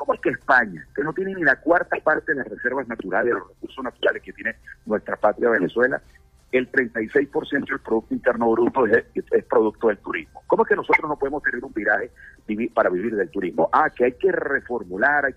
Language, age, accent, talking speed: Spanish, 50-69, Venezuelan, 205 wpm